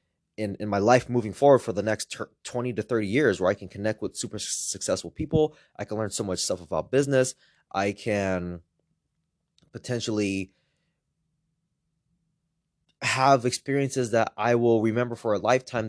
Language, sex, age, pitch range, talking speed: English, male, 20-39, 95-135 Hz, 160 wpm